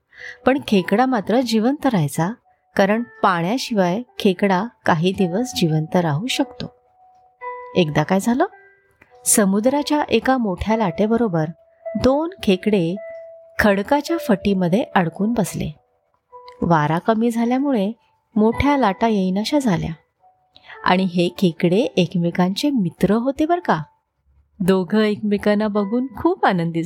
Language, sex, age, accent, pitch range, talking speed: Marathi, female, 30-49, native, 185-270 Hz, 90 wpm